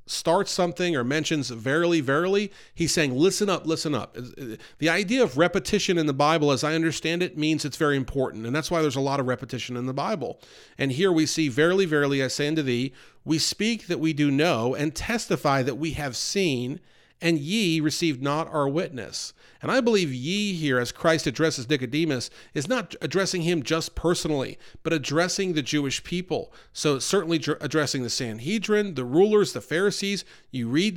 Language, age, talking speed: English, 40-59, 190 wpm